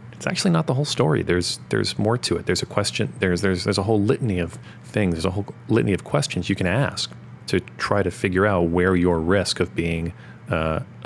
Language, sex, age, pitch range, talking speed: English, male, 30-49, 85-110 Hz, 230 wpm